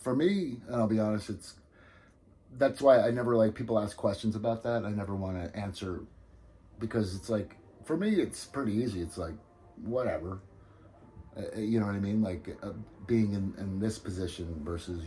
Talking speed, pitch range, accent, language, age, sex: 185 wpm, 90-110 Hz, American, English, 30-49, male